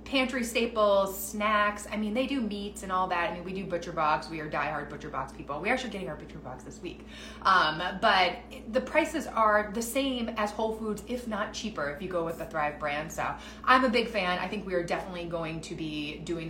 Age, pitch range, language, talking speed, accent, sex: 30-49, 170-225 Hz, English, 235 wpm, American, female